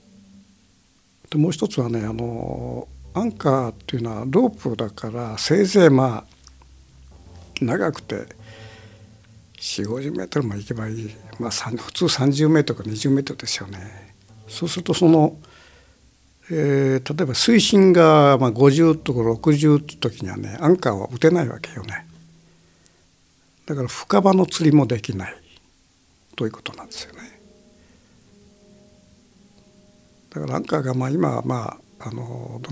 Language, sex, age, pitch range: Japanese, male, 60-79, 105-155 Hz